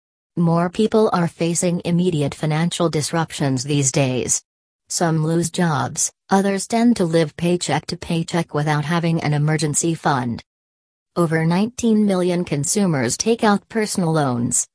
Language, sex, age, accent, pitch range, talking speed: English, female, 40-59, American, 145-180 Hz, 130 wpm